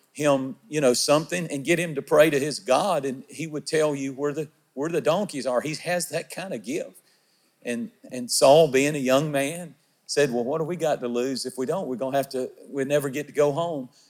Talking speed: 245 wpm